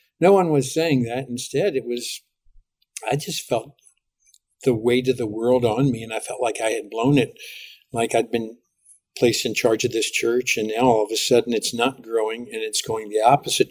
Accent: American